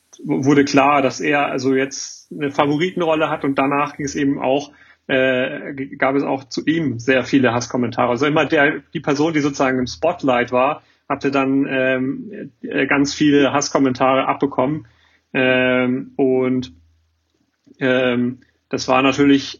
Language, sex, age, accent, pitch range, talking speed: German, male, 40-59, German, 125-140 Hz, 145 wpm